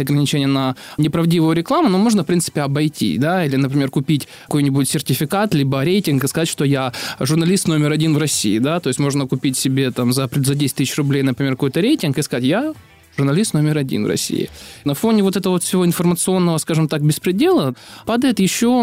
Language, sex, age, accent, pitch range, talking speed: Russian, male, 20-39, native, 140-180 Hz, 190 wpm